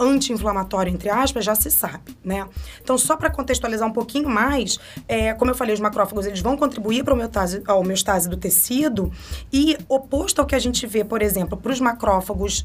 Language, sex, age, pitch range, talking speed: Portuguese, female, 20-39, 200-255 Hz, 190 wpm